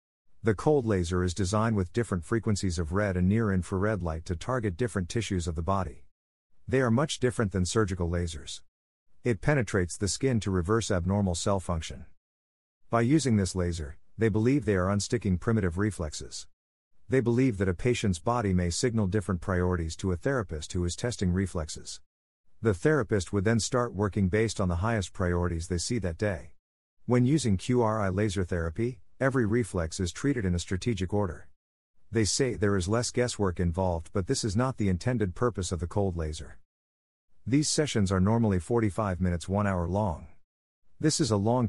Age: 50-69